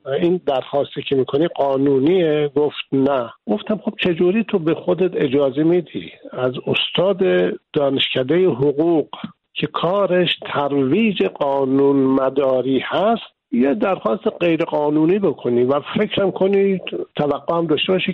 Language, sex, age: Persian, male, 60-79